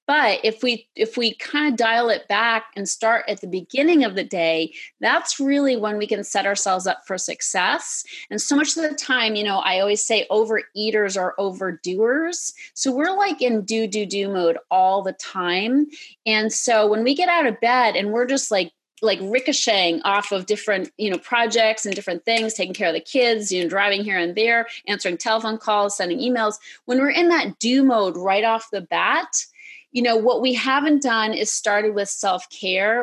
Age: 30-49